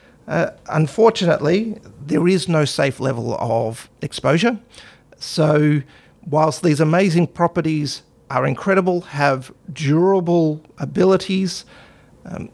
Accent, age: Australian, 40-59